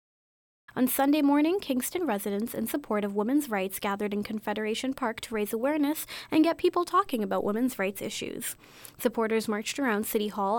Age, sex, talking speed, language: 20-39, female, 170 wpm, English